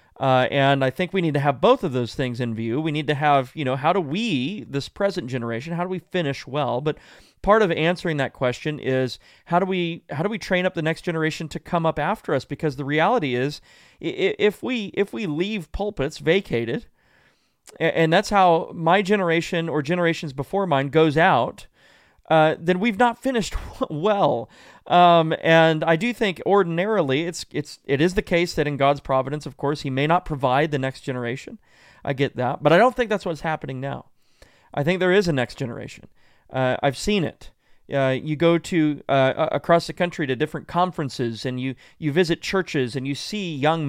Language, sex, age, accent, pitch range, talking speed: English, male, 30-49, American, 140-175 Hz, 205 wpm